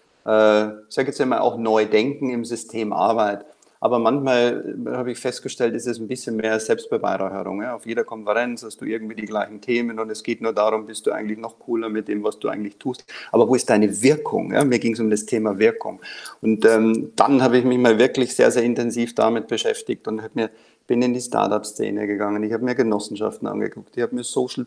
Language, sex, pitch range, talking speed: German, male, 110-140 Hz, 215 wpm